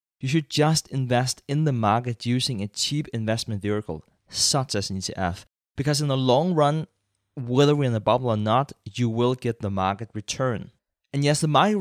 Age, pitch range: 20-39, 100-130 Hz